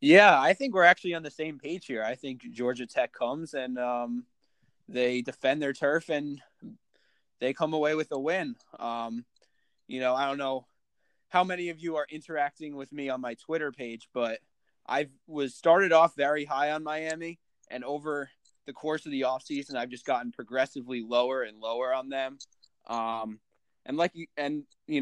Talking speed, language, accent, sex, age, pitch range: 185 wpm, English, American, male, 20-39, 125-150 Hz